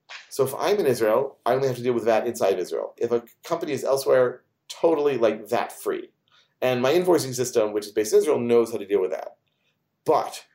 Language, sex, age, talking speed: English, male, 40-59, 215 wpm